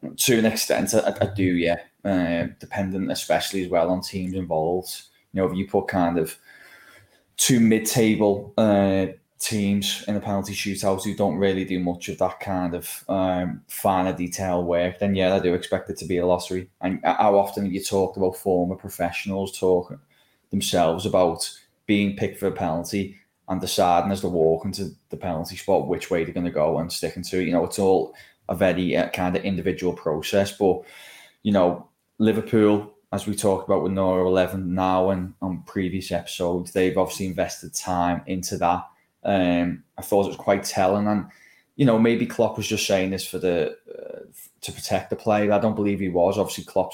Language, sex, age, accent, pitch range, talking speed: English, male, 10-29, British, 90-100 Hz, 195 wpm